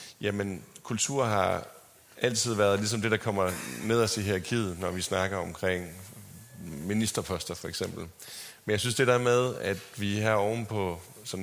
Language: Danish